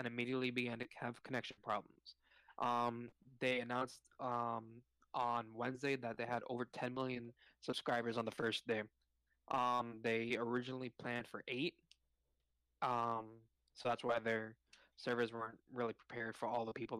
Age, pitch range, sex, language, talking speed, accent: 20-39, 115-125 Hz, male, English, 150 wpm, American